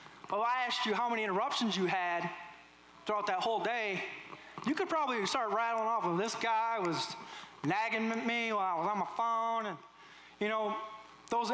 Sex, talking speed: male, 185 wpm